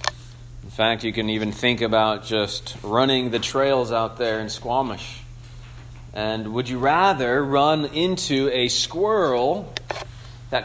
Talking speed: 135 wpm